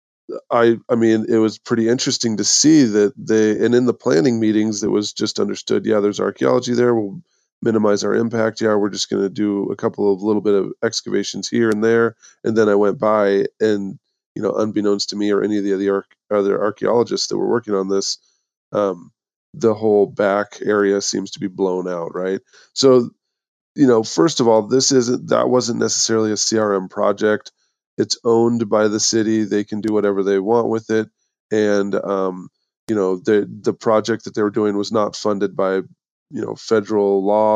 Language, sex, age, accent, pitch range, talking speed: English, male, 20-39, American, 100-110 Hz, 195 wpm